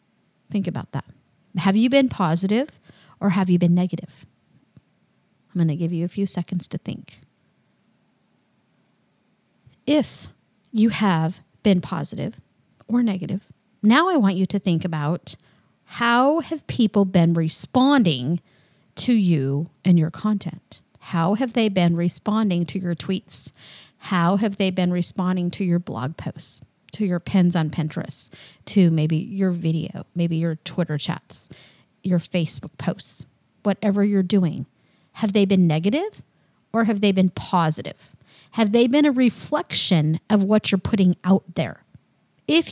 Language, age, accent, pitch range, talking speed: English, 40-59, American, 170-220 Hz, 145 wpm